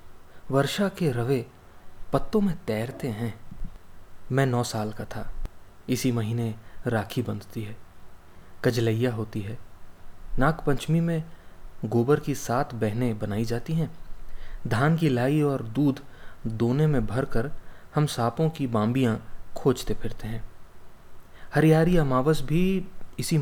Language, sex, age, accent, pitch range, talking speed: English, male, 20-39, Indian, 95-150 Hz, 125 wpm